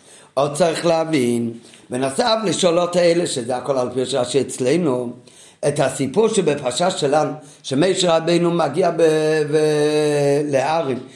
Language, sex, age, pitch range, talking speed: Hebrew, male, 50-69, 135-180 Hz, 120 wpm